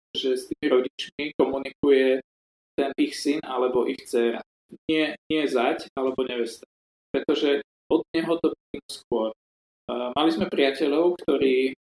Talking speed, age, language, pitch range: 130 wpm, 20-39, Slovak, 120-150 Hz